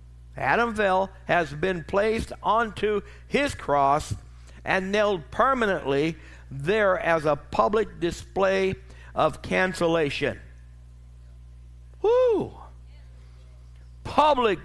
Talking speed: 80 wpm